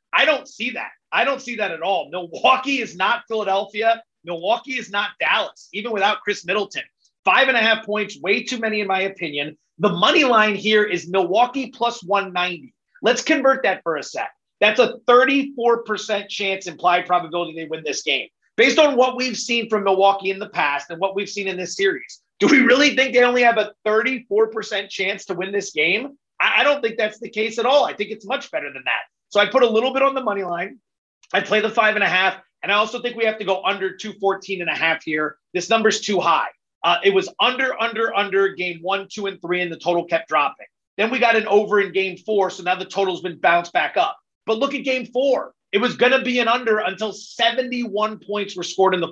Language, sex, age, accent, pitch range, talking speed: English, male, 30-49, American, 195-240 Hz, 230 wpm